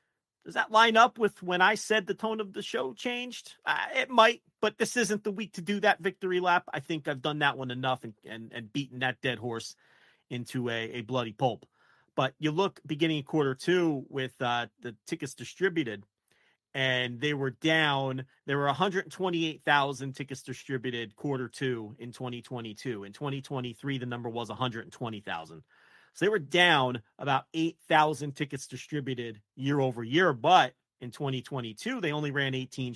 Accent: American